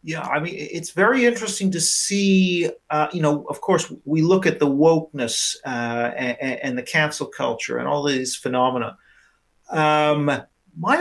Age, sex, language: 40-59, male, English